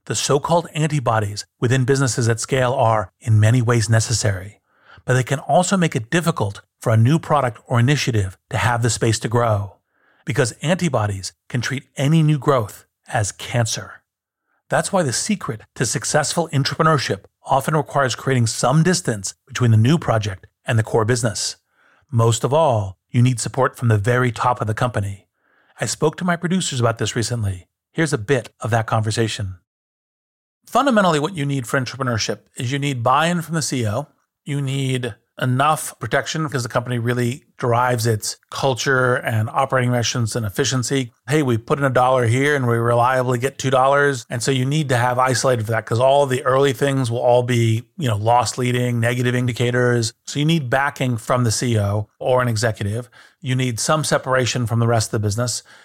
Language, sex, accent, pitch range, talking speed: English, male, American, 115-140 Hz, 185 wpm